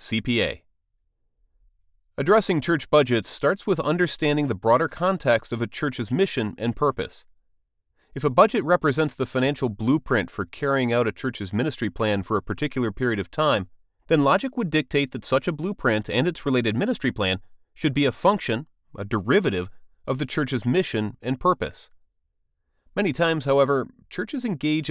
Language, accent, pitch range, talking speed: English, American, 115-155 Hz, 160 wpm